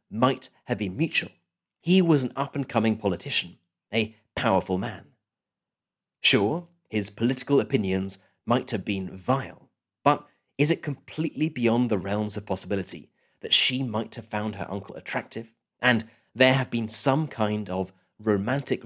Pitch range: 105-135 Hz